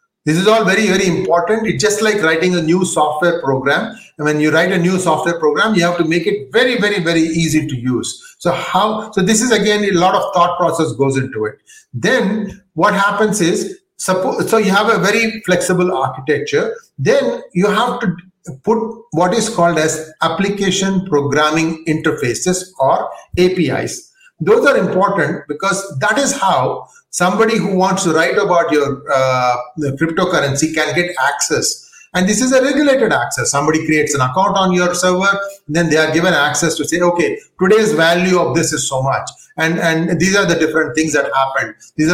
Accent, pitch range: Indian, 160-215 Hz